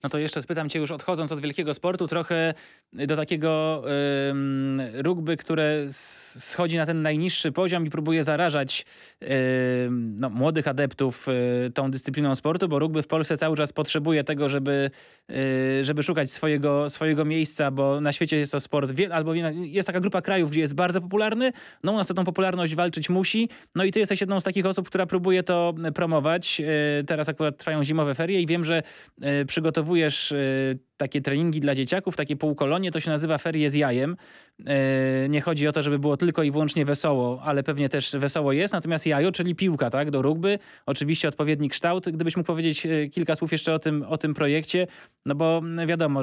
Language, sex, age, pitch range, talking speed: Polish, male, 20-39, 140-170 Hz, 180 wpm